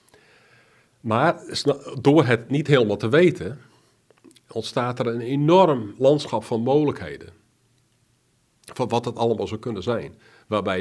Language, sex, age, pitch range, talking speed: Dutch, male, 50-69, 110-135 Hz, 120 wpm